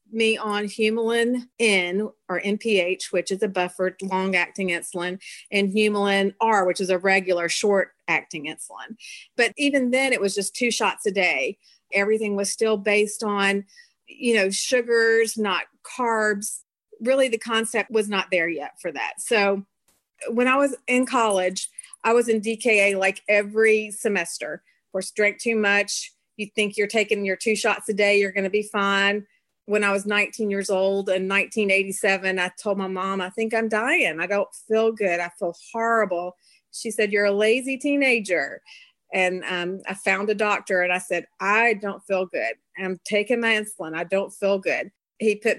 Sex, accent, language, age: female, American, English, 40-59